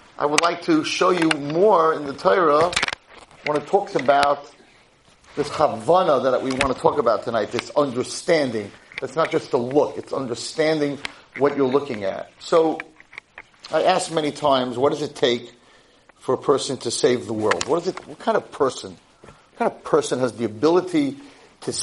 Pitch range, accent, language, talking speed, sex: 135-190 Hz, American, English, 185 wpm, male